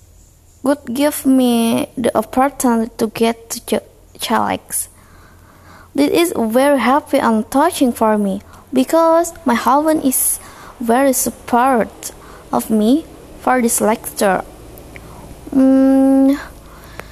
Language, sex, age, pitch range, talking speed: Indonesian, female, 20-39, 210-285 Hz, 100 wpm